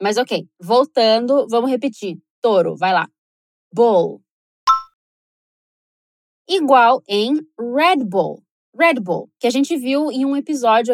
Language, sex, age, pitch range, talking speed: Portuguese, female, 20-39, 240-330 Hz, 120 wpm